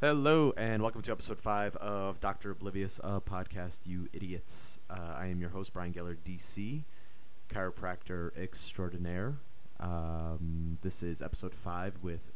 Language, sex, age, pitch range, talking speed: English, male, 30-49, 85-100 Hz, 140 wpm